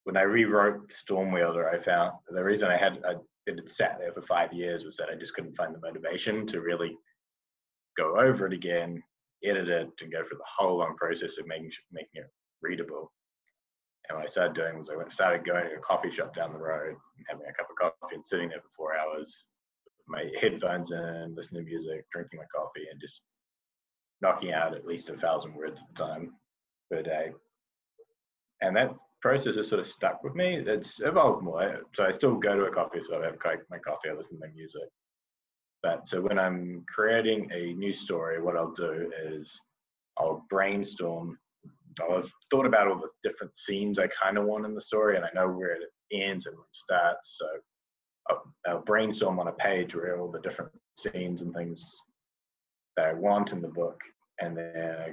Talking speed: 200 wpm